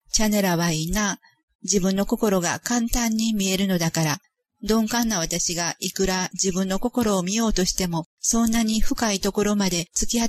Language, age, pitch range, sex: Japanese, 40-59, 180-220 Hz, female